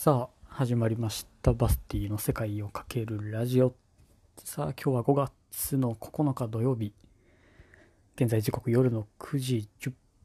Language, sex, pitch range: Japanese, male, 100-125 Hz